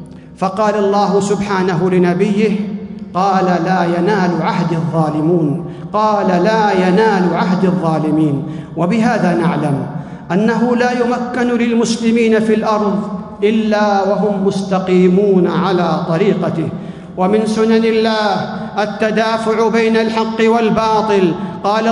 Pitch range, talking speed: 200-230 Hz, 80 wpm